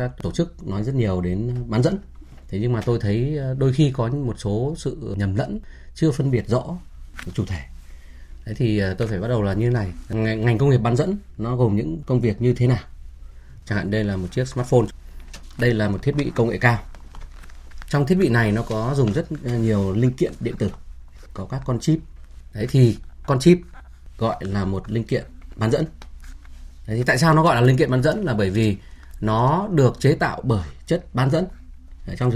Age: 20-39